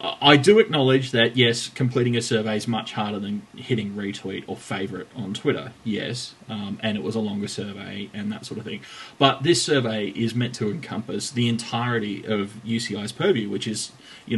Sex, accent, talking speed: male, Australian, 190 wpm